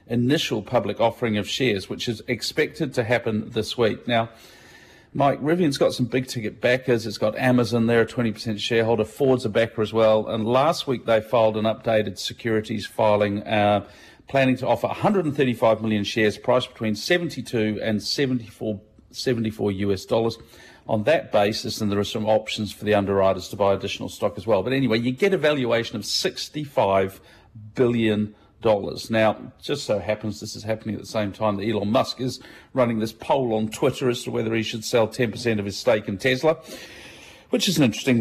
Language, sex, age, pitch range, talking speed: English, male, 50-69, 105-125 Hz, 185 wpm